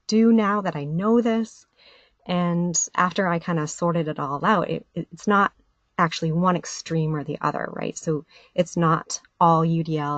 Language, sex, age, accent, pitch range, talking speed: English, female, 30-49, American, 155-180 Hz, 170 wpm